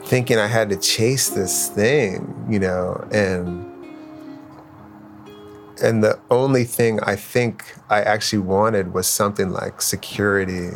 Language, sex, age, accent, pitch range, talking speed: English, male, 30-49, American, 95-115 Hz, 130 wpm